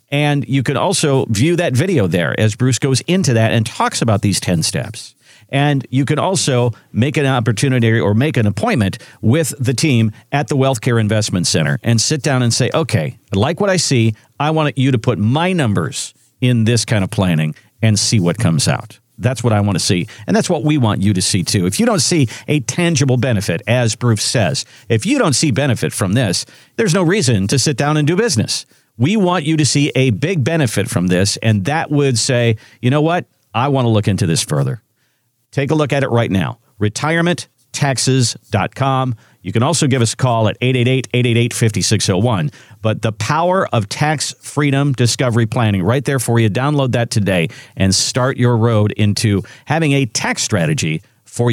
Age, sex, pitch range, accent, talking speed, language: 50-69, male, 110-140 Hz, American, 200 wpm, English